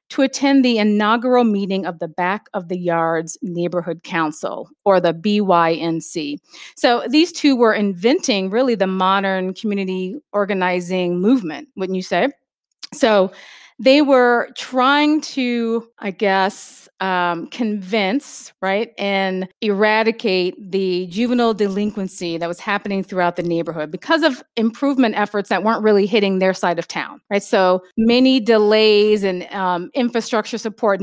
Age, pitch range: 40-59, 190-245 Hz